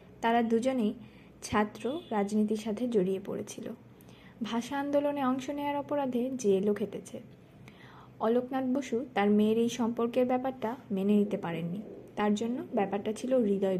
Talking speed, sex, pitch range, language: 125 wpm, female, 215-265 Hz, Bengali